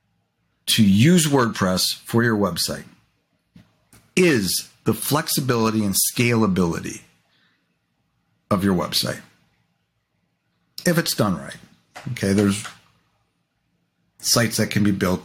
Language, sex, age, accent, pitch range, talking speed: English, male, 50-69, American, 100-135 Hz, 100 wpm